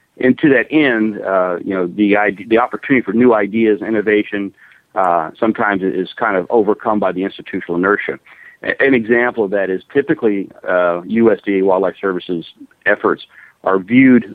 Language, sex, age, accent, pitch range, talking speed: English, male, 50-69, American, 95-115 Hz, 165 wpm